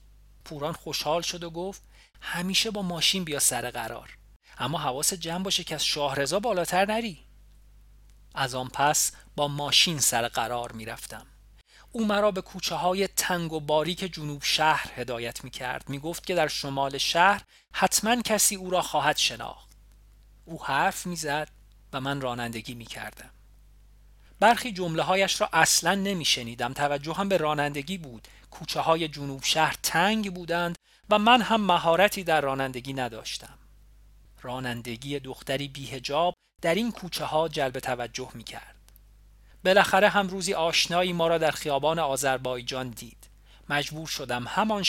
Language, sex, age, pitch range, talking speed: Persian, male, 40-59, 125-175 Hz, 140 wpm